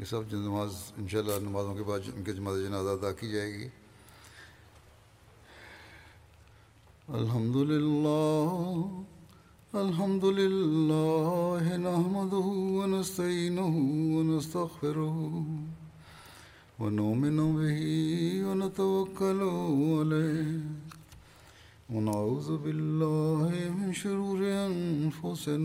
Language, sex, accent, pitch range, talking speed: Indonesian, male, Indian, 115-175 Hz, 35 wpm